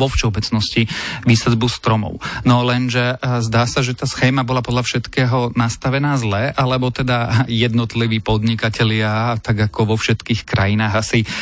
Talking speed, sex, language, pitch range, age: 135 wpm, male, Slovak, 110-130 Hz, 30-49